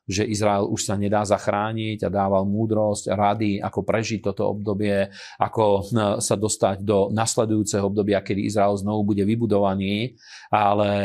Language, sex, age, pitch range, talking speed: Slovak, male, 40-59, 100-110 Hz, 140 wpm